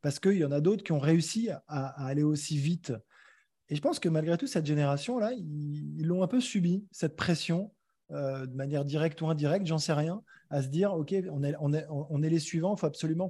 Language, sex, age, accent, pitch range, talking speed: French, male, 20-39, French, 140-170 Hz, 245 wpm